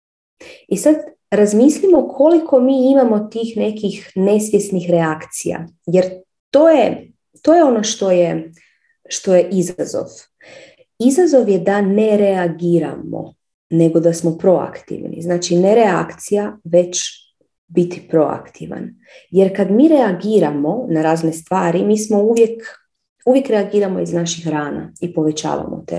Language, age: Croatian, 30-49